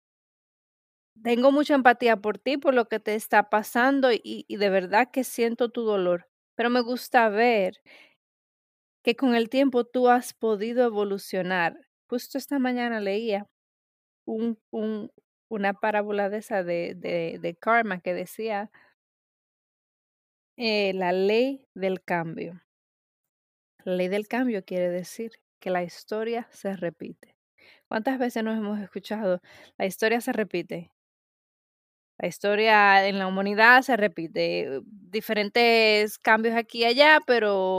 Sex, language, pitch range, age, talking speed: female, Spanish, 195-245 Hz, 30-49, 130 wpm